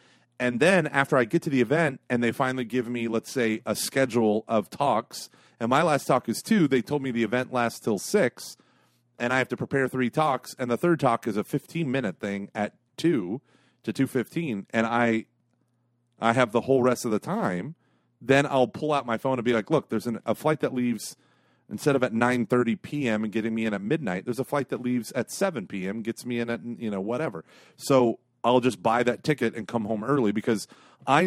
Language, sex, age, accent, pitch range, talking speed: English, male, 30-49, American, 115-135 Hz, 225 wpm